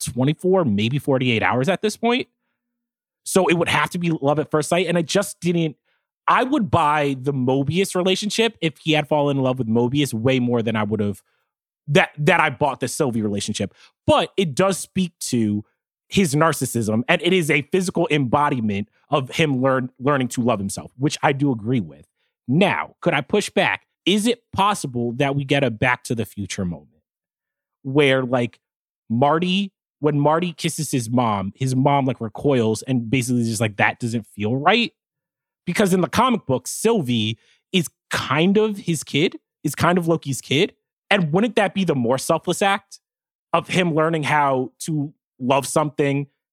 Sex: male